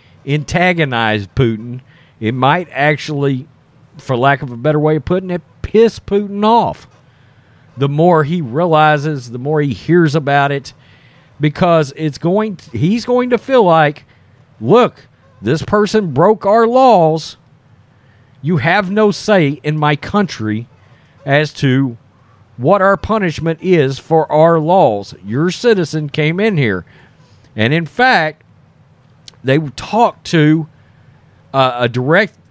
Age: 50-69